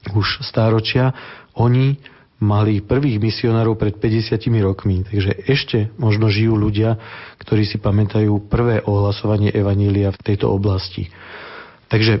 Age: 40-59